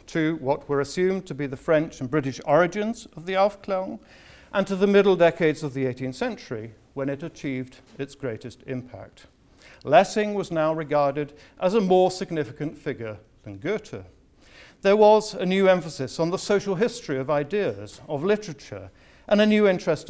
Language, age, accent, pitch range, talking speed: English, 60-79, British, 125-185 Hz, 170 wpm